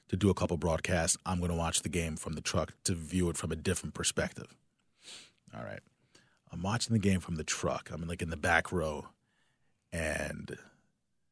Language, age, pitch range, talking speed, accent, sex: English, 30-49, 80-100 Hz, 195 wpm, American, male